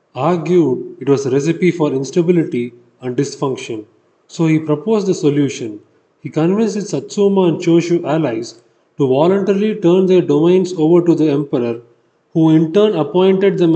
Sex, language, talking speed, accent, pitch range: male, Tamil, 155 wpm, native, 135-185 Hz